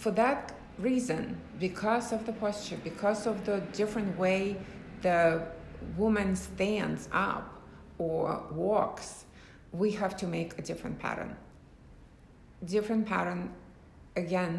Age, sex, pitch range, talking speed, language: 60-79, female, 165-210 Hz, 115 wpm, English